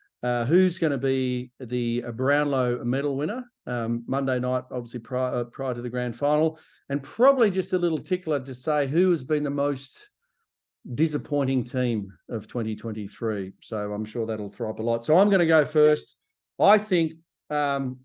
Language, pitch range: English, 125-160 Hz